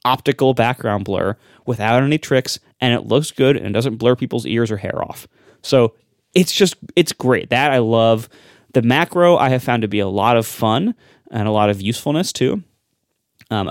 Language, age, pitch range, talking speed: English, 20-39, 110-140 Hz, 195 wpm